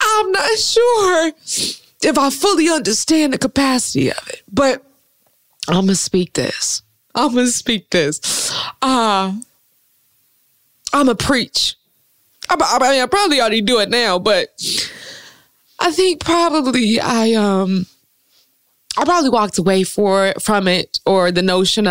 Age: 20-39